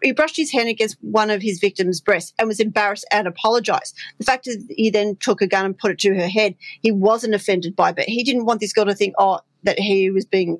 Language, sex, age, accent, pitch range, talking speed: English, female, 40-59, Australian, 195-225 Hz, 265 wpm